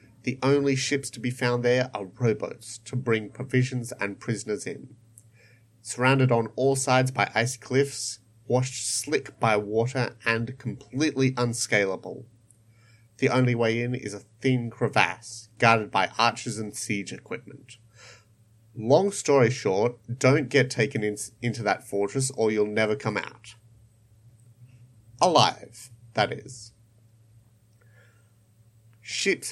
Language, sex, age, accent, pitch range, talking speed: English, male, 30-49, Australian, 110-130 Hz, 125 wpm